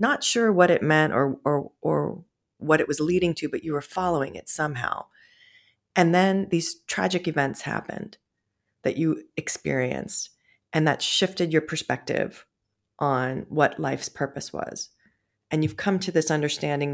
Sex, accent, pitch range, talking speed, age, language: female, American, 145-190 Hz, 155 wpm, 30-49, English